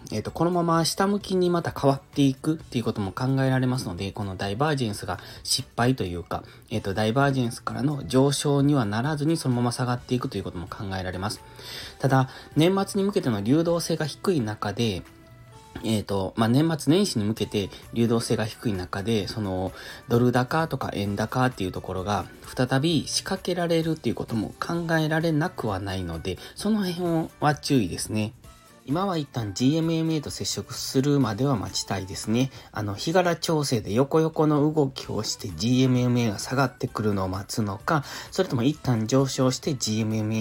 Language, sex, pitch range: Japanese, male, 105-140 Hz